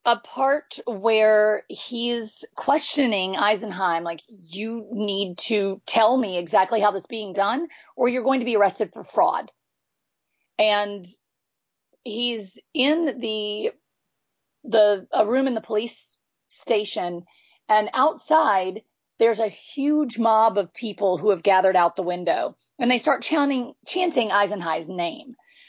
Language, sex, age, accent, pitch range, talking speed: English, female, 40-59, American, 200-250 Hz, 135 wpm